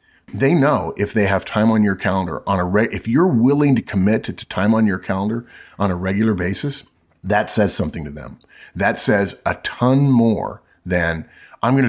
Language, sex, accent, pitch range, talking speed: English, male, American, 90-115 Hz, 195 wpm